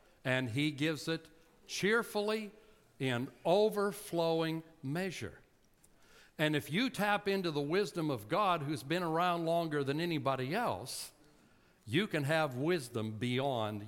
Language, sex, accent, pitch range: English, male, American, 120-170 Hz